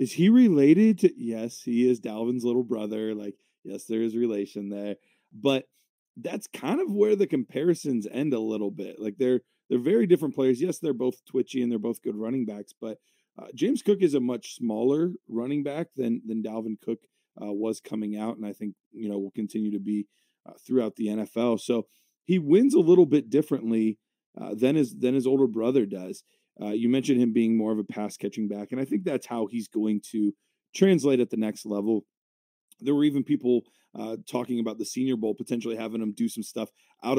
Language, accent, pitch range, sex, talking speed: English, American, 110-135 Hz, male, 210 wpm